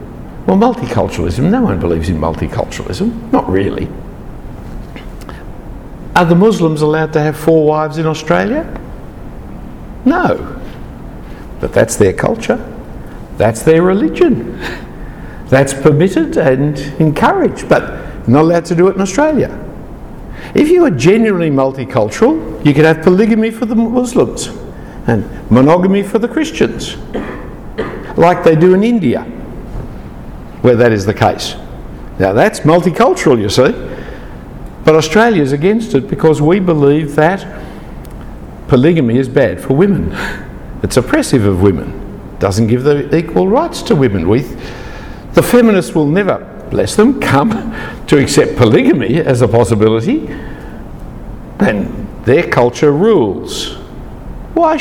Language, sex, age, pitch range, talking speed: English, male, 60-79, 125-190 Hz, 125 wpm